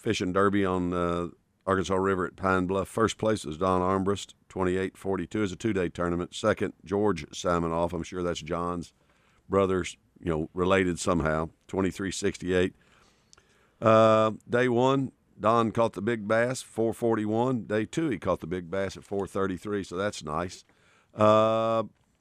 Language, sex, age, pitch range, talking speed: English, male, 50-69, 90-105 Hz, 145 wpm